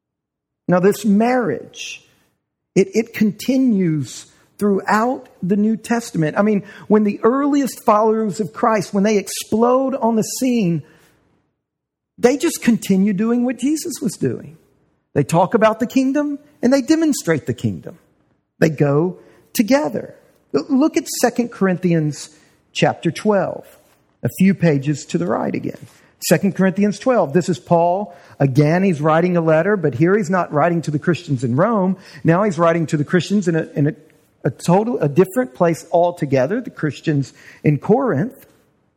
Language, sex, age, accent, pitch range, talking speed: English, male, 50-69, American, 165-230 Hz, 150 wpm